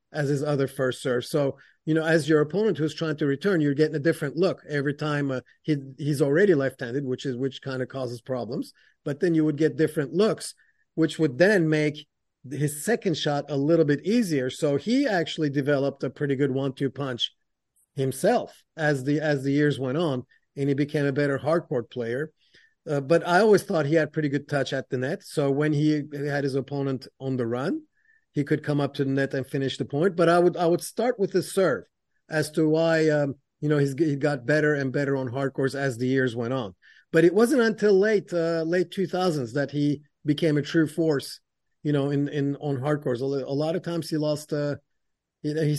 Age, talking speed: 40-59, 215 wpm